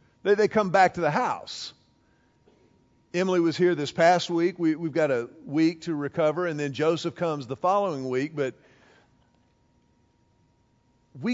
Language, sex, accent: English, male, American